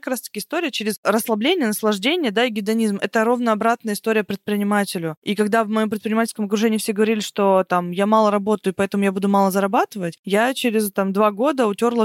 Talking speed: 195 wpm